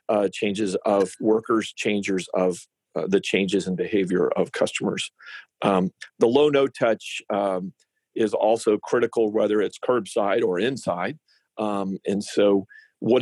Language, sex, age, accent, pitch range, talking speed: English, male, 50-69, American, 95-110 Hz, 130 wpm